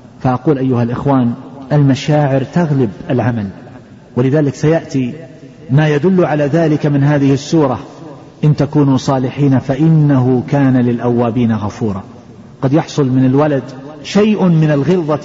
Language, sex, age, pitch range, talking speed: Arabic, male, 40-59, 130-160 Hz, 115 wpm